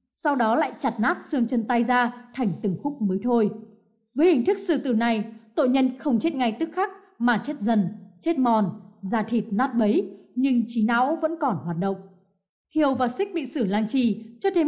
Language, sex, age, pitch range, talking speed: Vietnamese, female, 20-39, 215-295 Hz, 215 wpm